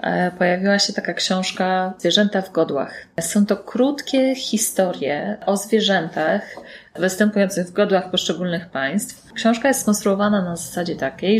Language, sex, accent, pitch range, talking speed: Polish, female, native, 160-205 Hz, 125 wpm